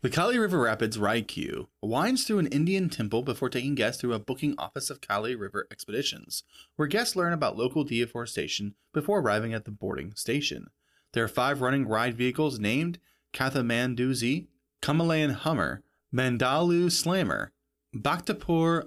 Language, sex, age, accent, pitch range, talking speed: English, male, 20-39, American, 120-165 Hz, 150 wpm